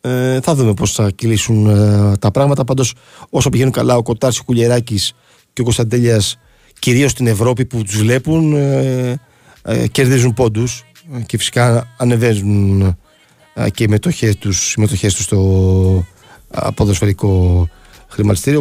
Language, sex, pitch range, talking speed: Greek, male, 100-120 Hz, 125 wpm